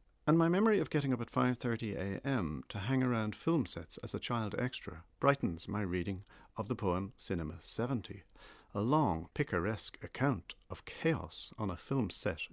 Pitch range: 95-120 Hz